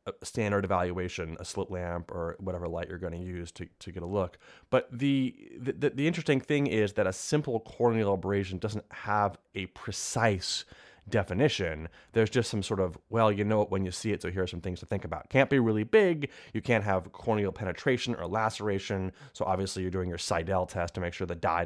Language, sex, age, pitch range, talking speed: Hebrew, male, 30-49, 90-110 Hz, 220 wpm